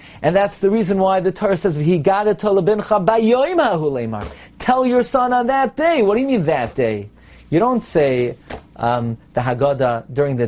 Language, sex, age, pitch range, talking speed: English, male, 40-59, 135-195 Hz, 160 wpm